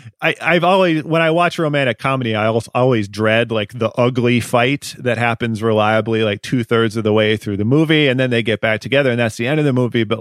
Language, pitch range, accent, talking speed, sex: English, 110-140 Hz, American, 245 wpm, male